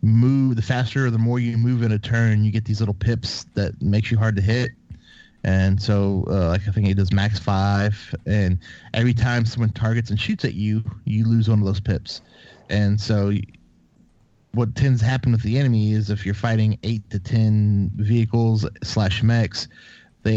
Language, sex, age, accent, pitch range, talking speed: English, male, 30-49, American, 100-115 Hz, 195 wpm